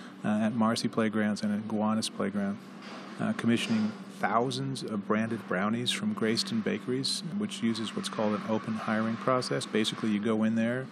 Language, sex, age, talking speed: English, male, 30-49, 165 wpm